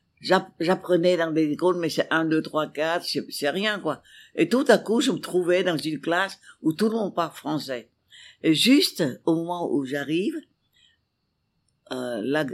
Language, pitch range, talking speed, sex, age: English, 150-190 Hz, 170 wpm, female, 60-79